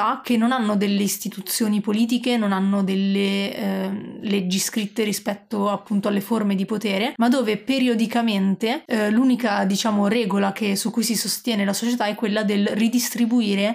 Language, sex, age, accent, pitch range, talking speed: Italian, female, 30-49, native, 200-230 Hz, 155 wpm